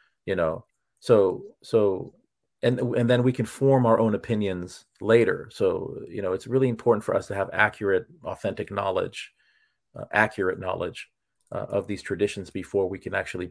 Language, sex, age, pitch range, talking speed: English, male, 40-59, 95-120 Hz, 170 wpm